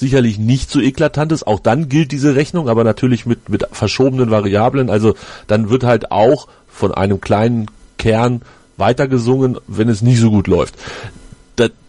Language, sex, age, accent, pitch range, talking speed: German, male, 40-59, German, 110-135 Hz, 165 wpm